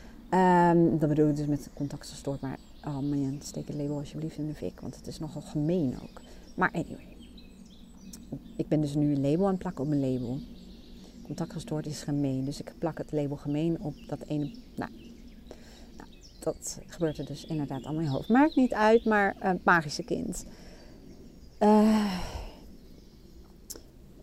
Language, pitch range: Dutch, 145-200 Hz